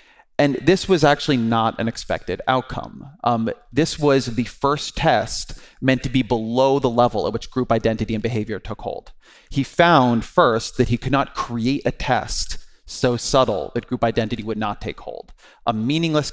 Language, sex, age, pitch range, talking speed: English, male, 30-49, 115-135 Hz, 180 wpm